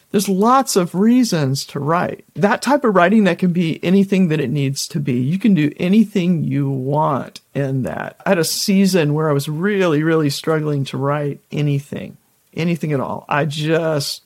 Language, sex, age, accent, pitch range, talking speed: English, male, 50-69, American, 145-185 Hz, 190 wpm